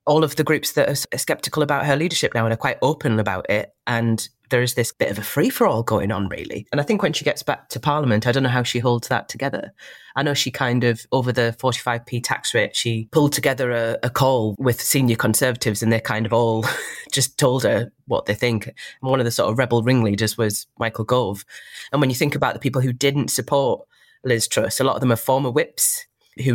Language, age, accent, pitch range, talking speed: English, 20-39, British, 110-130 Hz, 240 wpm